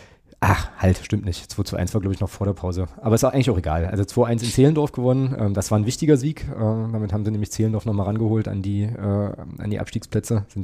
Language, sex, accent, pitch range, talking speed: German, male, German, 95-115 Hz, 250 wpm